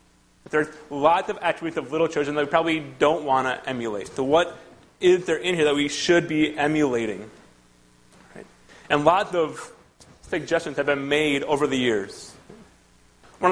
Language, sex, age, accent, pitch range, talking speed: English, male, 30-49, American, 130-175 Hz, 160 wpm